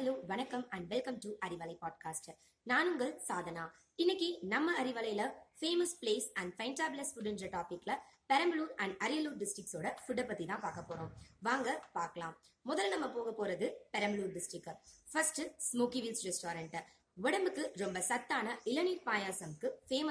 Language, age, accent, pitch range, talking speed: Tamil, 20-39, native, 175-285 Hz, 65 wpm